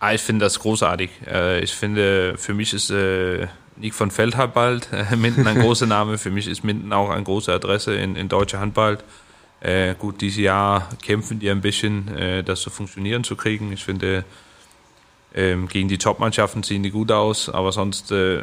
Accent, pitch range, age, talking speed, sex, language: German, 95-110 Hz, 30-49, 170 wpm, male, German